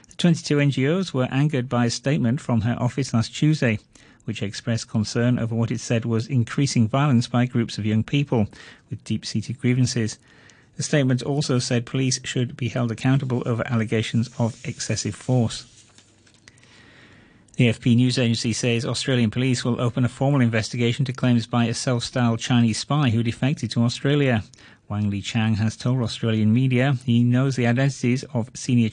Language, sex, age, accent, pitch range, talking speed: English, male, 40-59, British, 115-130 Hz, 165 wpm